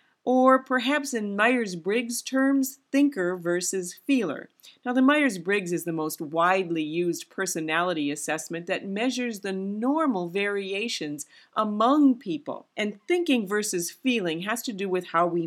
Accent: American